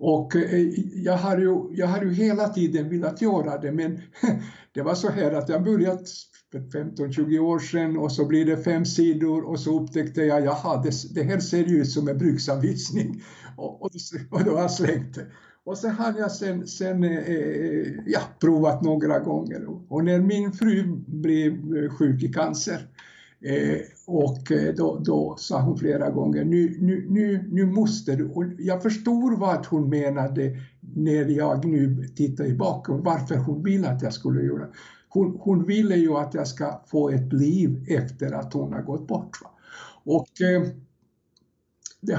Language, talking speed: Swedish, 170 wpm